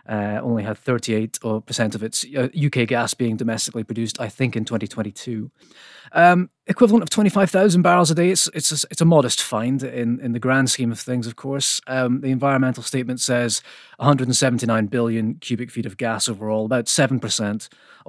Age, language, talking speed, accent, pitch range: 30-49, English, 175 wpm, British, 115-150 Hz